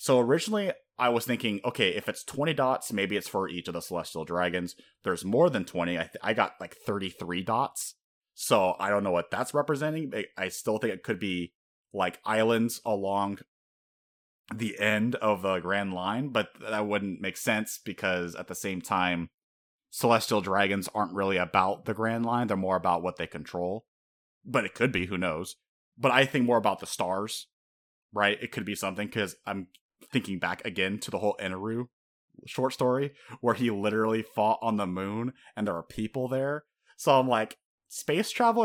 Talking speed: 190 wpm